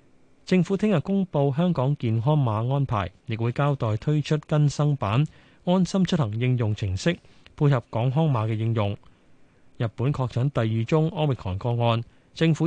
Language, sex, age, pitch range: Chinese, male, 20-39, 115-155 Hz